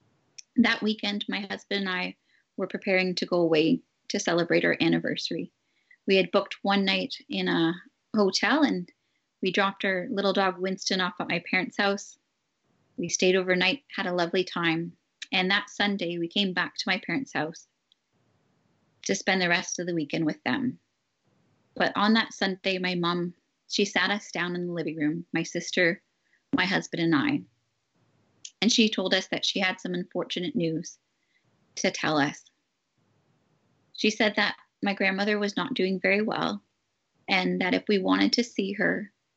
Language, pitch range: English, 175-205 Hz